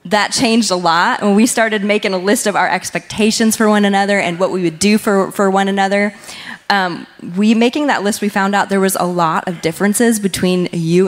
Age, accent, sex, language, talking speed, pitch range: 20-39, American, female, English, 220 wpm, 175-210 Hz